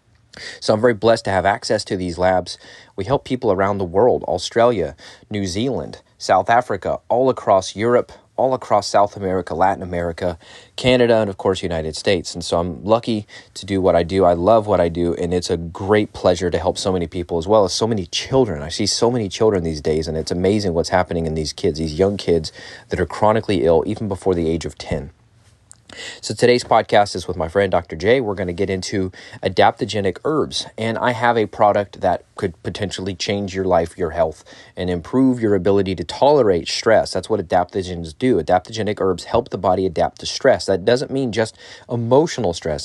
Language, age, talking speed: English, 30-49, 205 wpm